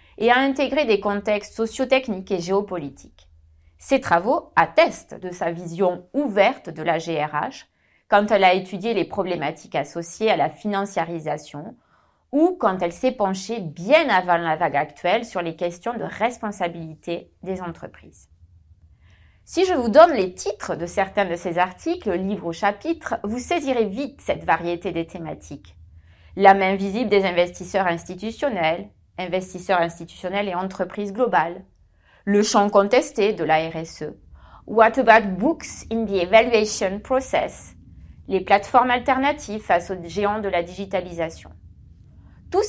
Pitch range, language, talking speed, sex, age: 165-225 Hz, French, 140 wpm, female, 30-49